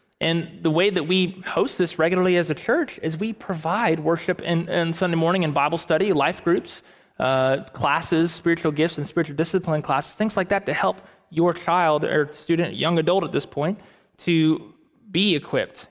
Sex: male